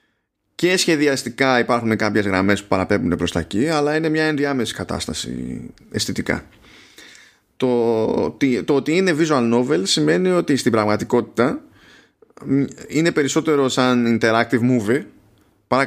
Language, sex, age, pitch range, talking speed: Greek, male, 20-39, 105-145 Hz, 115 wpm